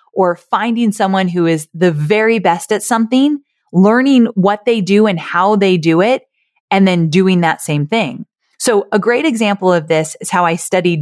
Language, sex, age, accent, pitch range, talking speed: English, female, 30-49, American, 160-205 Hz, 190 wpm